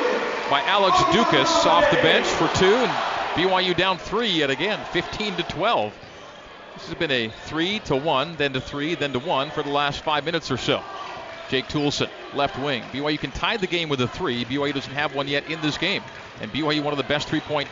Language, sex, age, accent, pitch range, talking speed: English, male, 40-59, American, 145-185 Hz, 215 wpm